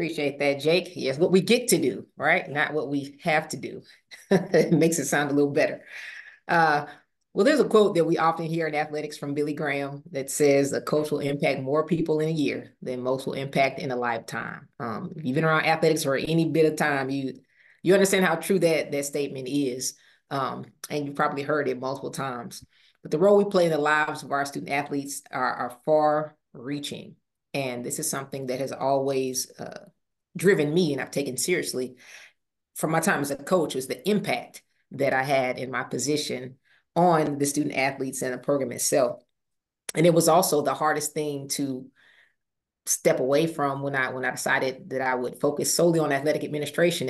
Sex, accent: female, American